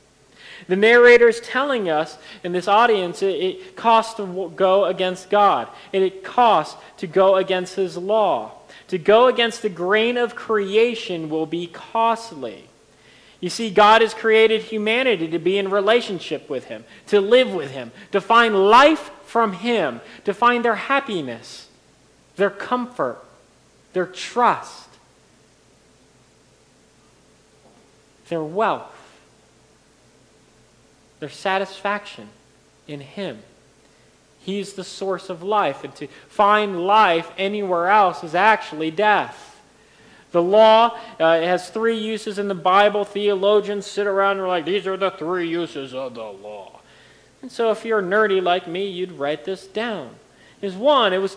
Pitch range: 180-225 Hz